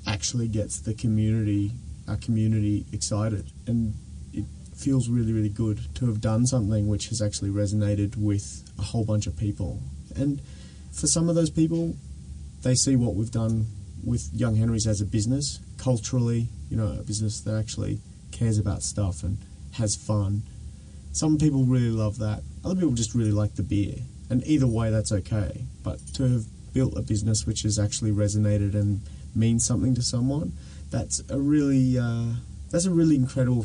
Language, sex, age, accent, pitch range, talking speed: English, male, 30-49, Australian, 100-120 Hz, 175 wpm